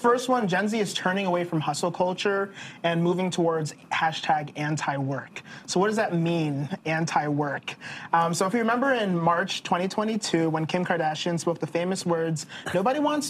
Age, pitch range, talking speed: 30-49, 160-195 Hz, 165 wpm